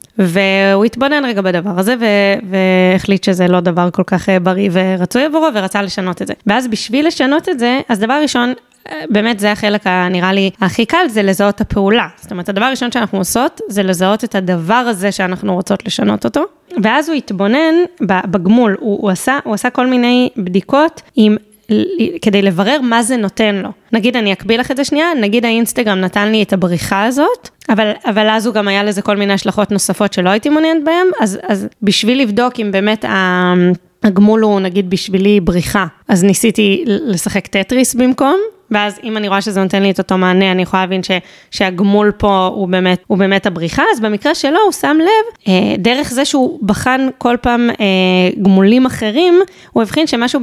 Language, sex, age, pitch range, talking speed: Hebrew, female, 20-39, 195-245 Hz, 190 wpm